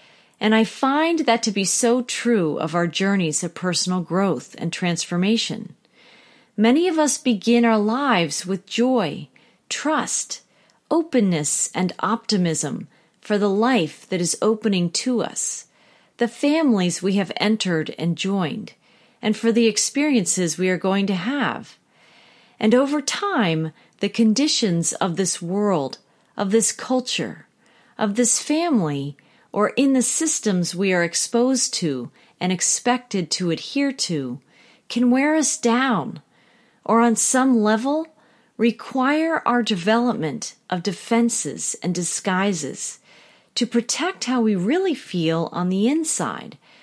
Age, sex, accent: 40-59, female, American